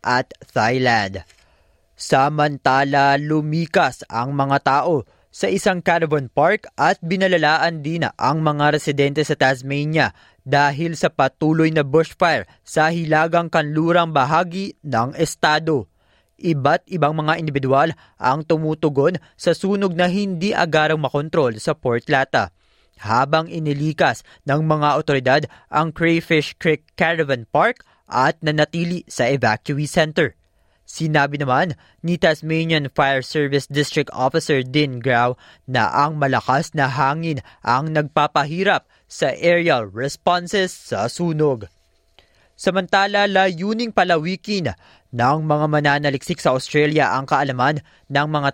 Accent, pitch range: native, 135-165 Hz